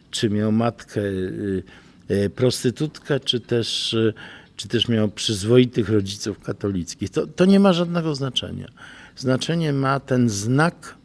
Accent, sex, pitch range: native, male, 100-140 Hz